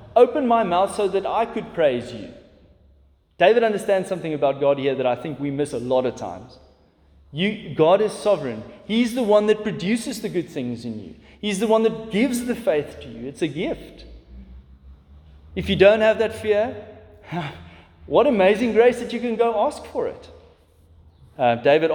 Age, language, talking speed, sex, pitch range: 30-49, English, 185 wpm, male, 125-210 Hz